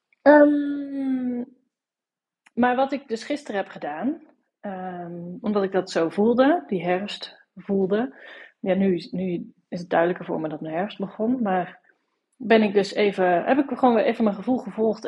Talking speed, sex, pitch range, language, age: 165 wpm, female, 185-250 Hz, Dutch, 30-49